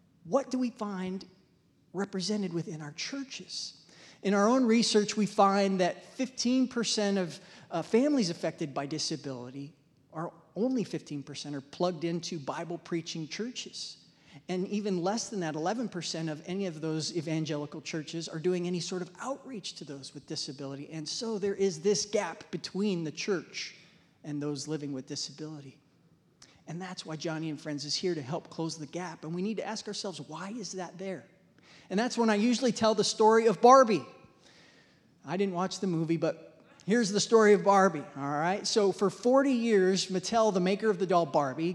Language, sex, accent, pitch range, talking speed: English, male, American, 155-200 Hz, 175 wpm